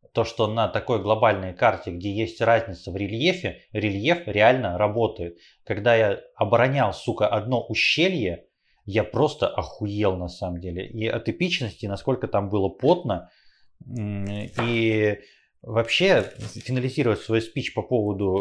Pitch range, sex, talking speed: 105-135 Hz, male, 130 wpm